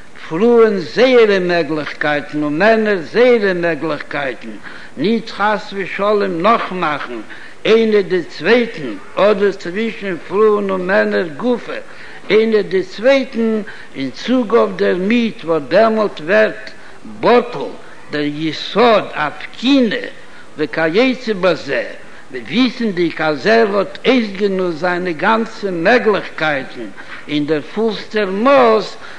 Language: Hebrew